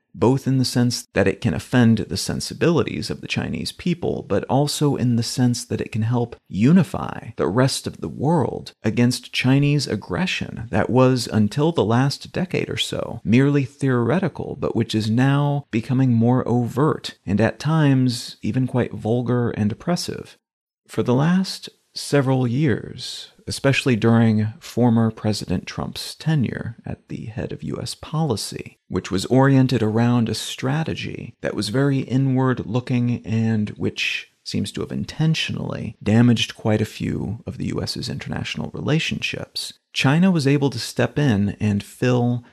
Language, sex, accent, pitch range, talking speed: English, male, American, 110-135 Hz, 150 wpm